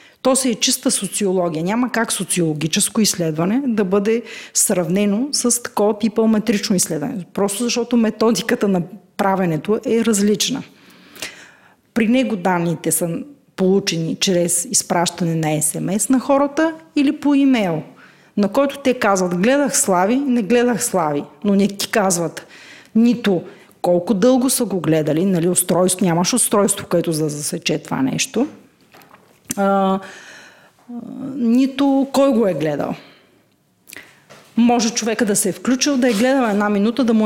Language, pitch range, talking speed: Bulgarian, 190-255 Hz, 135 wpm